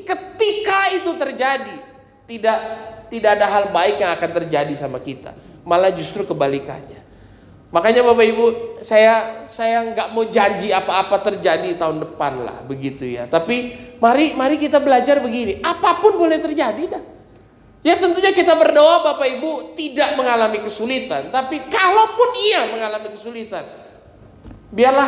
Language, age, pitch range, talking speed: Indonesian, 30-49, 170-275 Hz, 135 wpm